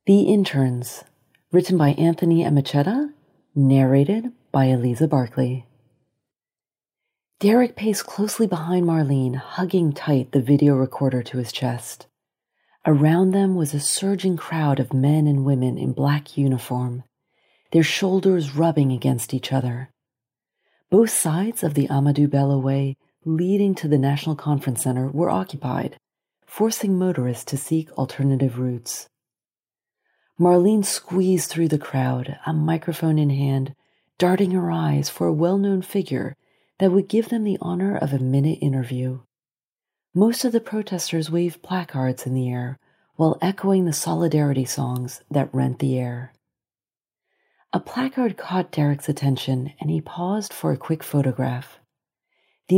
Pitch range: 135-180 Hz